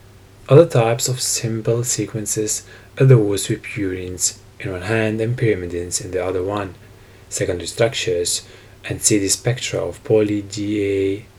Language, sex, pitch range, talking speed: English, male, 95-110 Hz, 130 wpm